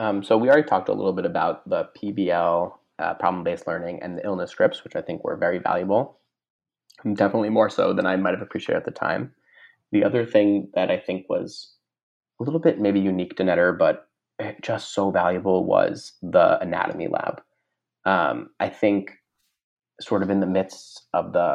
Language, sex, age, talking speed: English, male, 20-39, 190 wpm